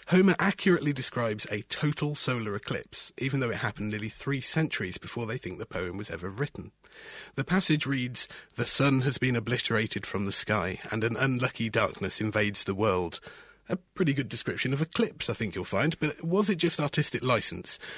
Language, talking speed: English, 185 wpm